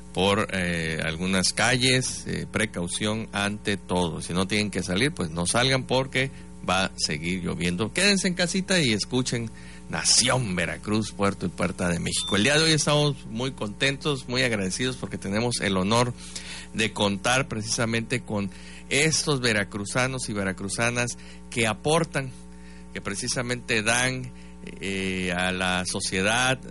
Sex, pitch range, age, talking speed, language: male, 90-120 Hz, 50-69, 140 wpm, Spanish